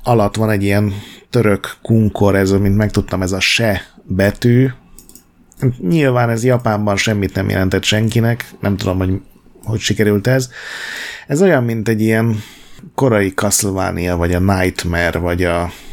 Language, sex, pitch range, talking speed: Hungarian, male, 95-115 Hz, 145 wpm